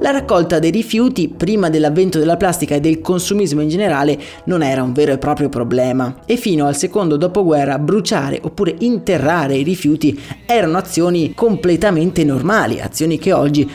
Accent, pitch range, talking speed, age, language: native, 145-195 Hz, 160 wpm, 30-49, Italian